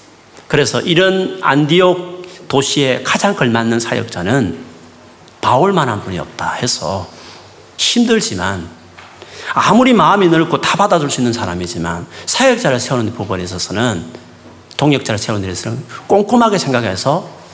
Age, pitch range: 40-59, 105-160 Hz